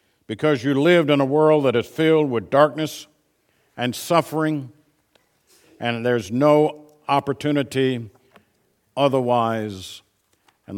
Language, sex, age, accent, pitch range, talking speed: English, male, 50-69, American, 110-145 Hz, 105 wpm